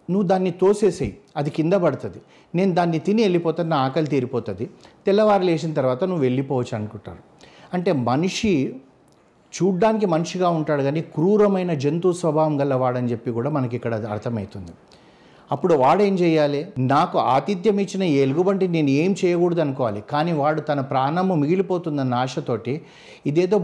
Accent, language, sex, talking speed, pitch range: native, Telugu, male, 125 wpm, 135-180 Hz